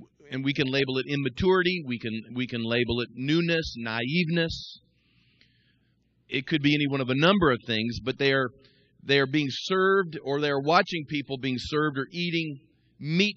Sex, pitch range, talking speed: male, 110-145 Hz, 185 wpm